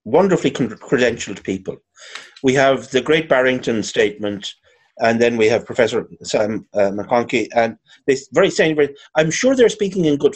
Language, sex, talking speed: English, male, 170 wpm